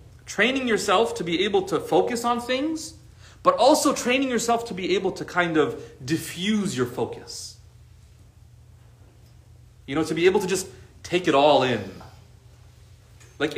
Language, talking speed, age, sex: English, 150 wpm, 30-49, male